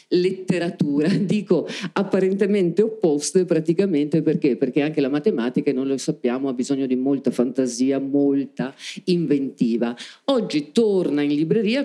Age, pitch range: 50-69, 140-185 Hz